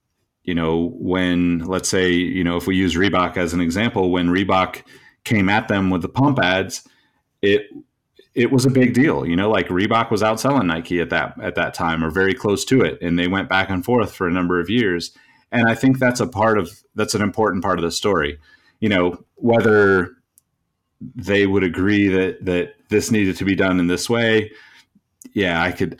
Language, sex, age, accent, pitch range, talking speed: English, male, 30-49, American, 85-105 Hz, 210 wpm